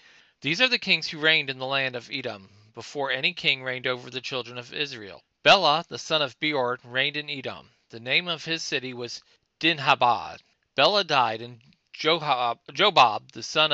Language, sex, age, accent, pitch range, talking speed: English, male, 40-59, American, 125-155 Hz, 180 wpm